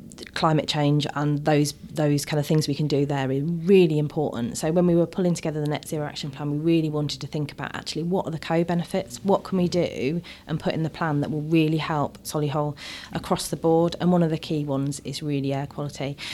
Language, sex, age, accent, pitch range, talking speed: English, female, 30-49, British, 145-175 Hz, 240 wpm